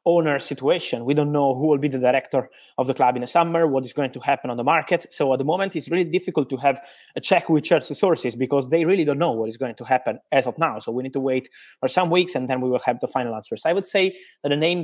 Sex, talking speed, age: male, 295 wpm, 20-39